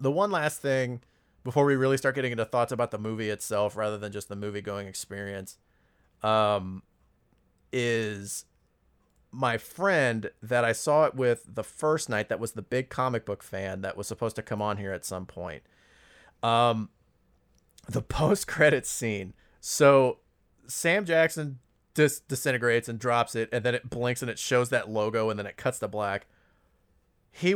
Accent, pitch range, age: American, 105-135 Hz, 30-49